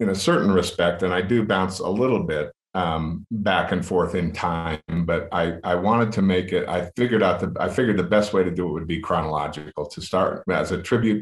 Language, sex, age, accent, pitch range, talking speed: English, male, 50-69, American, 85-95 Hz, 235 wpm